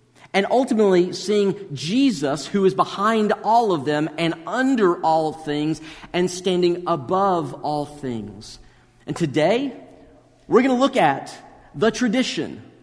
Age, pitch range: 40-59, 160-220 Hz